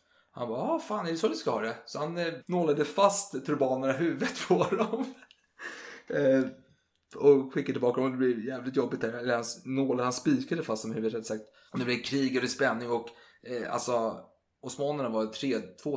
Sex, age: male, 20-39